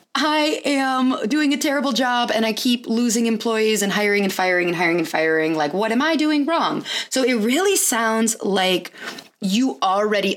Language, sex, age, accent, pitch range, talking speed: English, female, 20-39, American, 180-245 Hz, 185 wpm